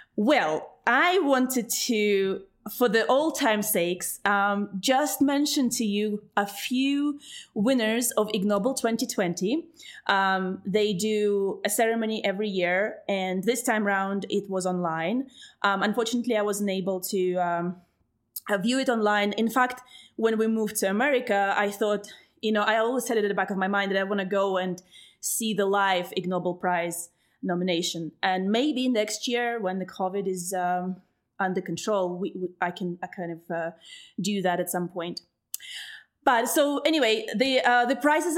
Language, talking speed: English, 170 wpm